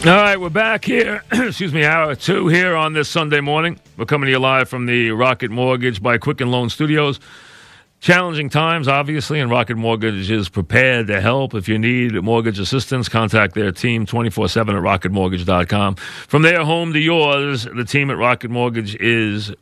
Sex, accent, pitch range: male, American, 100-130 Hz